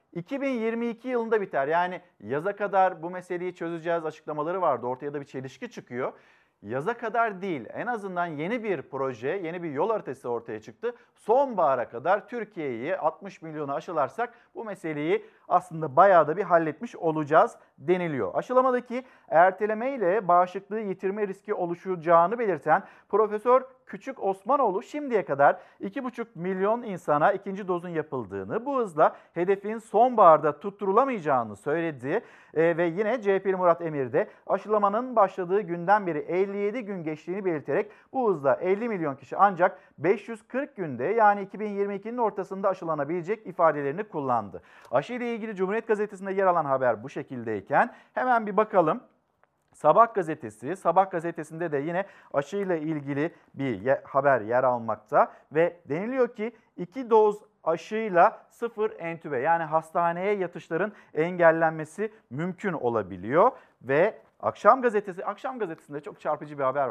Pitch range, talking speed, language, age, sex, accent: 160-215 Hz, 130 wpm, Turkish, 50-69, male, native